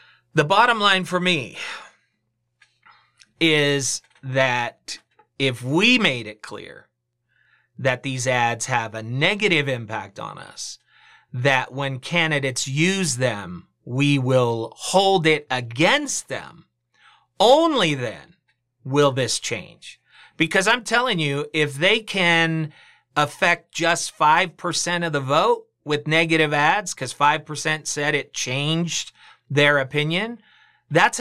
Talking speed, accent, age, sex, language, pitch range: 115 wpm, American, 40-59, male, English, 130-165 Hz